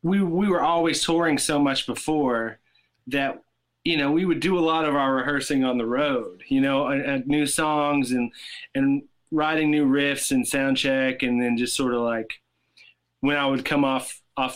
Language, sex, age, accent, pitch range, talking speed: English, male, 30-49, American, 125-155 Hz, 200 wpm